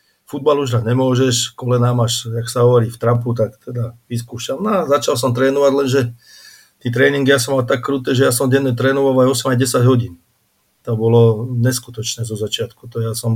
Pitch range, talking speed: 115-125 Hz, 180 wpm